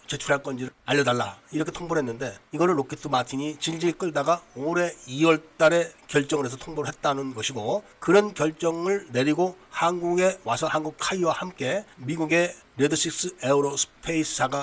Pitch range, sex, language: 140-175 Hz, male, Korean